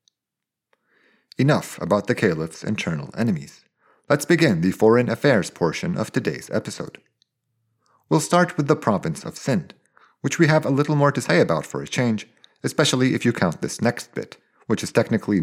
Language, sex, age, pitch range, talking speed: English, male, 40-59, 105-145 Hz, 170 wpm